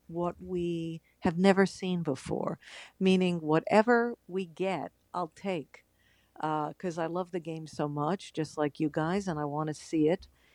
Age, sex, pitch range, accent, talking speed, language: 50-69, female, 150-180 Hz, American, 170 wpm, English